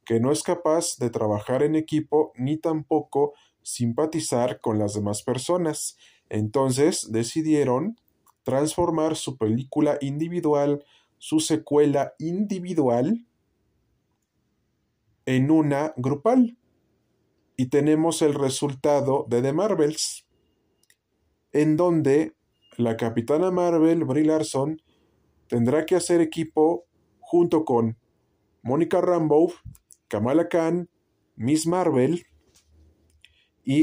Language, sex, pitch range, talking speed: Spanish, male, 120-160 Hz, 95 wpm